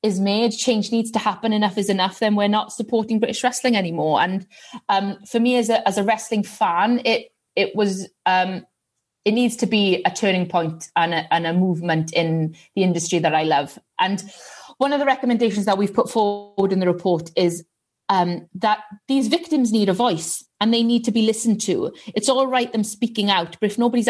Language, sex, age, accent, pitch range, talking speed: English, female, 30-49, British, 175-220 Hz, 210 wpm